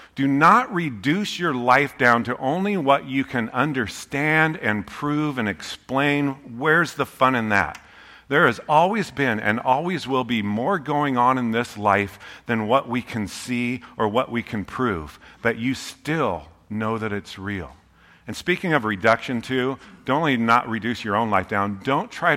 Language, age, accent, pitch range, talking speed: English, 50-69, American, 105-130 Hz, 180 wpm